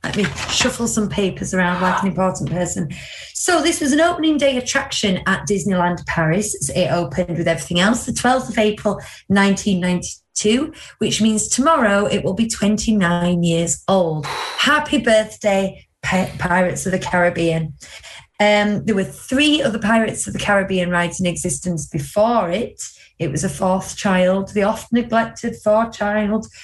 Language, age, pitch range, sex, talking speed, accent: English, 30-49, 175-215 Hz, female, 160 wpm, British